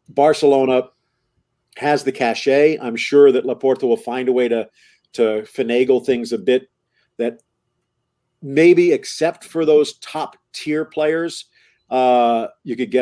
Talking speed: 135 wpm